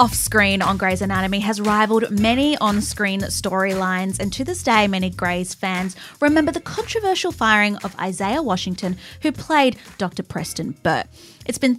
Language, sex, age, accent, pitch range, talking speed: English, female, 20-39, Australian, 185-235 Hz, 155 wpm